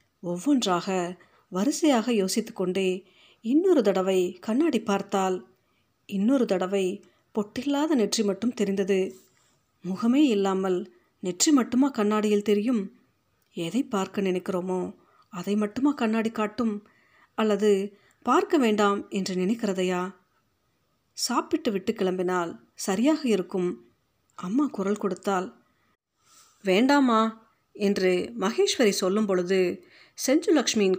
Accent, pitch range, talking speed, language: native, 185-235 Hz, 85 wpm, Tamil